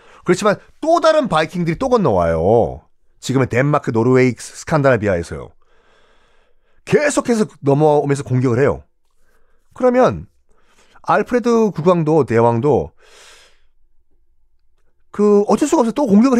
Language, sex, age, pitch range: Korean, male, 40-59, 130-210 Hz